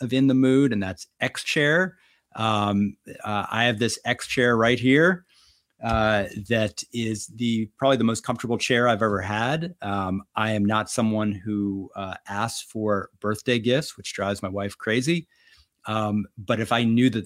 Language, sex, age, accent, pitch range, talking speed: English, male, 30-49, American, 105-130 Hz, 175 wpm